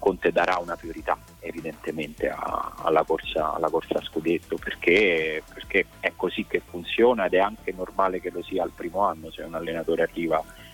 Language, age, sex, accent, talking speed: Italian, 30-49, male, native, 170 wpm